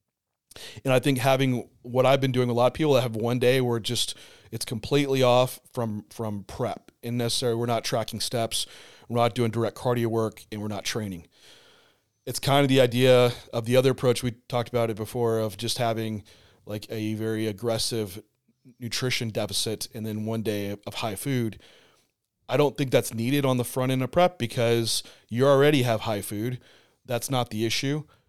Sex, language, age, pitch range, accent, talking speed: male, English, 30-49, 115-130 Hz, American, 195 wpm